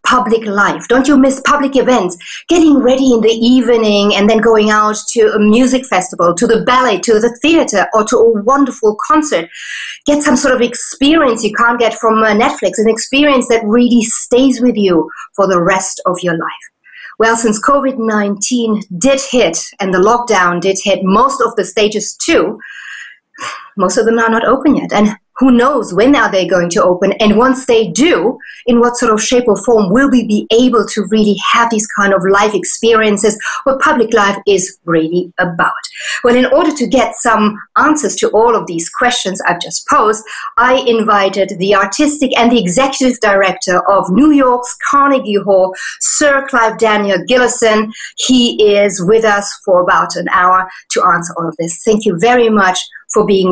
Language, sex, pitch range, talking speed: English, female, 200-250 Hz, 185 wpm